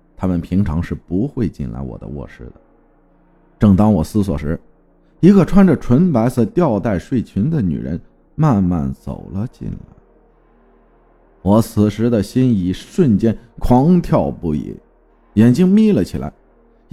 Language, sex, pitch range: Chinese, male, 90-150 Hz